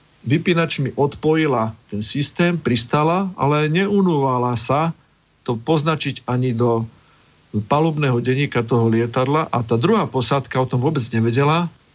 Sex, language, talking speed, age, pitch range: male, Slovak, 120 wpm, 50-69, 115-145 Hz